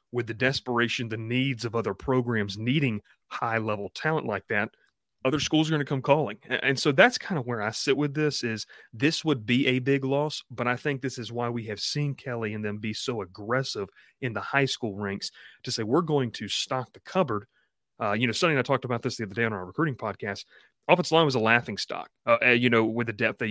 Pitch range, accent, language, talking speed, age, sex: 110-130 Hz, American, English, 235 wpm, 30-49, male